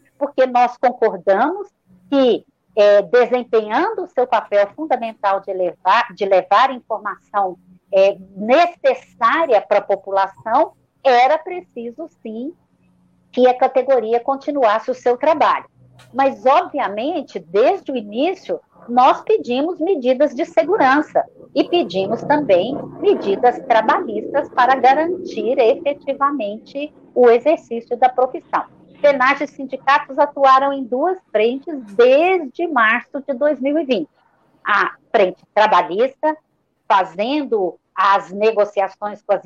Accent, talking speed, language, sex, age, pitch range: Brazilian, 105 wpm, Portuguese, female, 50-69, 210-295 Hz